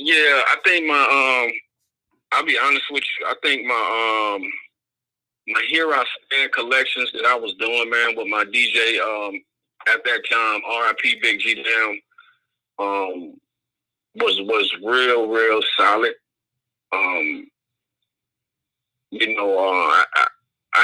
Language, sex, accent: English, male, American